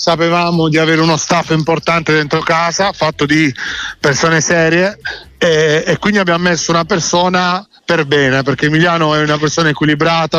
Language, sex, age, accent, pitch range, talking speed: Italian, male, 40-59, native, 145-170 Hz, 155 wpm